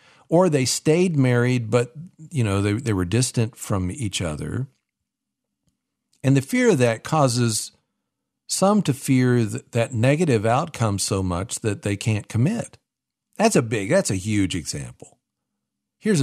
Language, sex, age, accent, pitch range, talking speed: English, male, 50-69, American, 105-140 Hz, 150 wpm